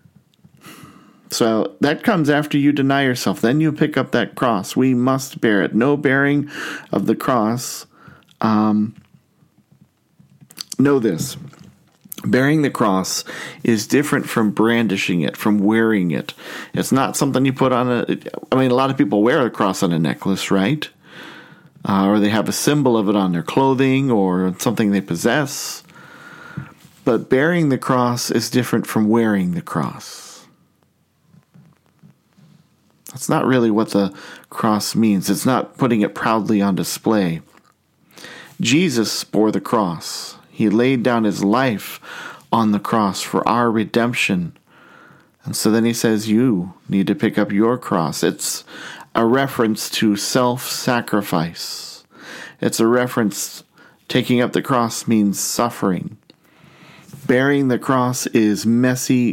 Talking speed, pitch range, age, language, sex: 145 wpm, 105-130 Hz, 40-59, English, male